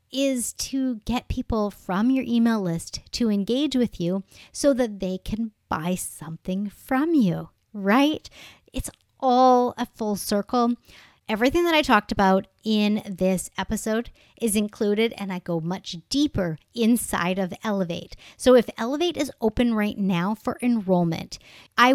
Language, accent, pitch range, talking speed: English, American, 190-245 Hz, 150 wpm